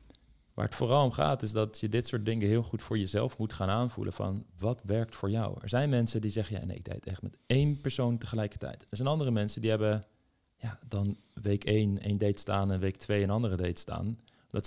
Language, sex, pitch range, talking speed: Dutch, male, 100-115 Hz, 245 wpm